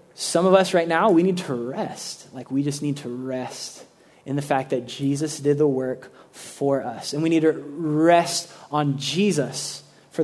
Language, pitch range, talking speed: English, 140-175 Hz, 195 wpm